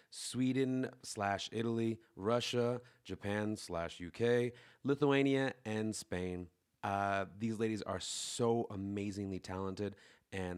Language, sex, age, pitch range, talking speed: English, male, 30-49, 100-120 Hz, 100 wpm